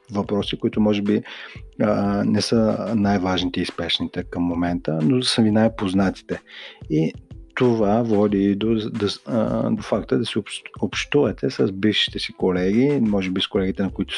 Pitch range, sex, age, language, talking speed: 95-120 Hz, male, 40-59, Bulgarian, 150 wpm